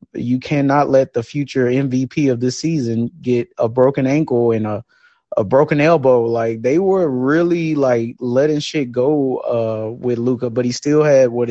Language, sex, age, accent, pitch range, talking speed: English, male, 20-39, American, 120-155 Hz, 175 wpm